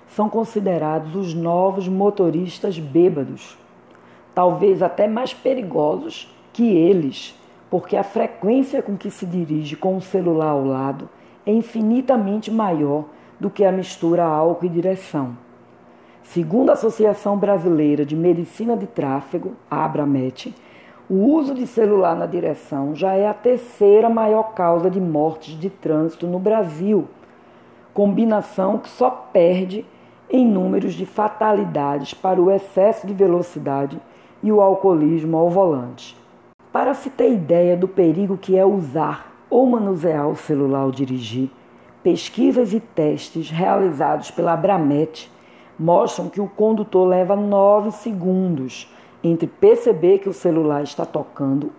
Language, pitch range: Portuguese, 155-210 Hz